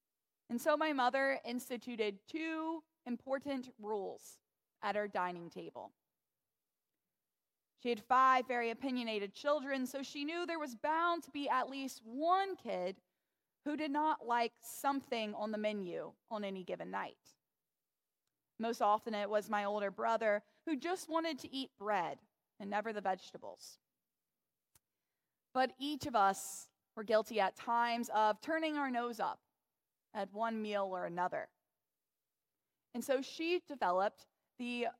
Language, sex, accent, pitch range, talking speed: English, female, American, 220-295 Hz, 140 wpm